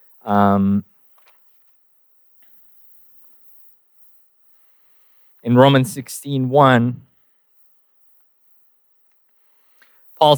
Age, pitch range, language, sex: 20-39, 130-165 Hz, English, male